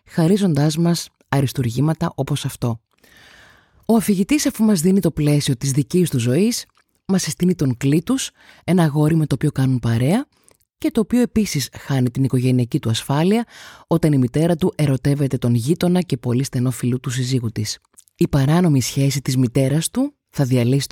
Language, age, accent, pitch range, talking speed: Greek, 20-39, native, 125-175 Hz, 165 wpm